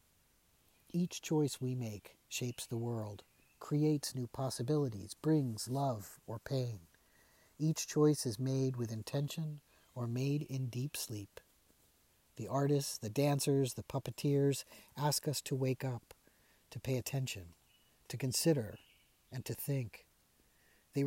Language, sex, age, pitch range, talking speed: English, male, 50-69, 120-145 Hz, 130 wpm